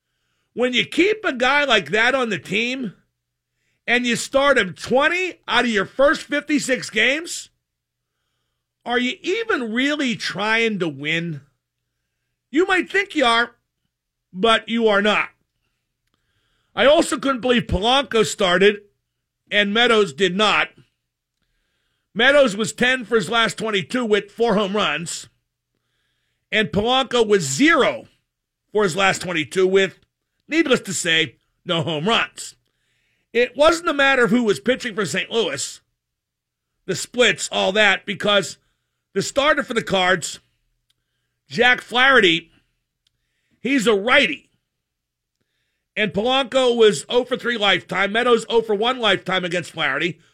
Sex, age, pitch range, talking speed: male, 50-69, 190-250 Hz, 135 wpm